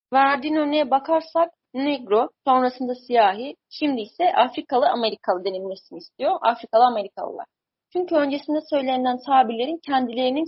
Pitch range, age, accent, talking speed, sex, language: 240-300 Hz, 30-49, native, 110 wpm, female, Turkish